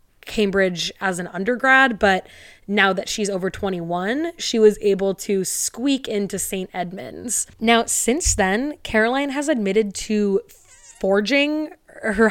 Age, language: 20-39, English